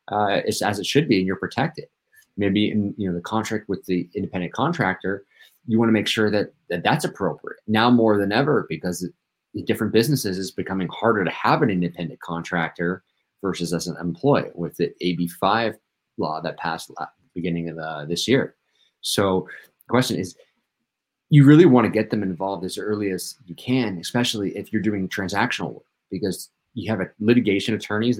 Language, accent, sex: English, American, male